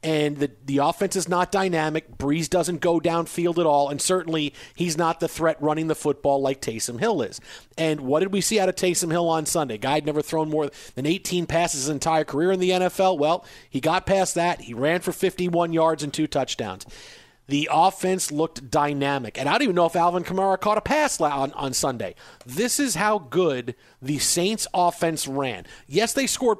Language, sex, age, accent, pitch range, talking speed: English, male, 40-59, American, 150-190 Hz, 210 wpm